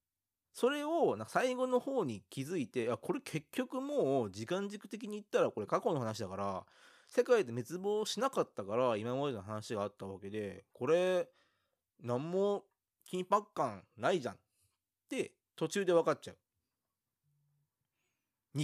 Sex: male